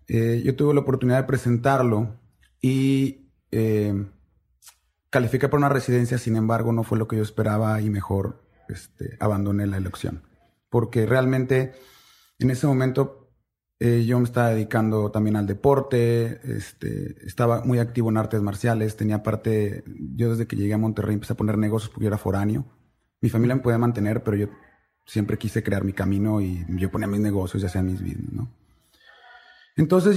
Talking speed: 170 wpm